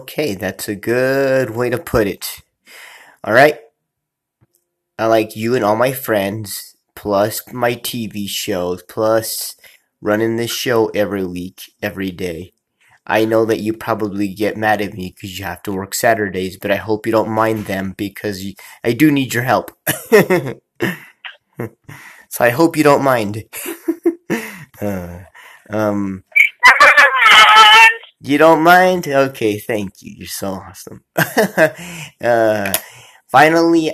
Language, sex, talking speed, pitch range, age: English, male, 135 wpm, 105-125 Hz, 20-39